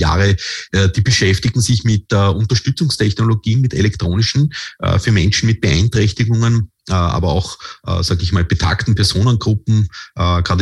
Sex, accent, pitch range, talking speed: male, Austrian, 95-110 Hz, 115 wpm